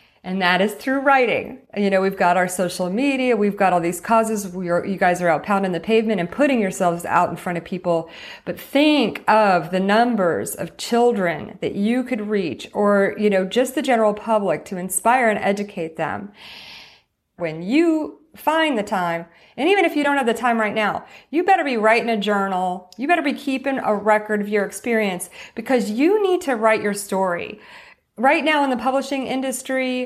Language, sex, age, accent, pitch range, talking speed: English, female, 30-49, American, 190-255 Hz, 195 wpm